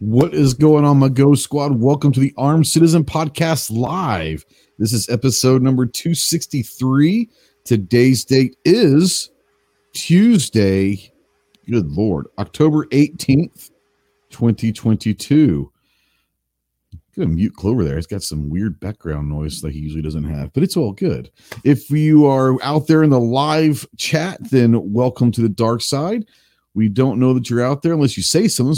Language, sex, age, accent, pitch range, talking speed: English, male, 40-59, American, 110-150 Hz, 150 wpm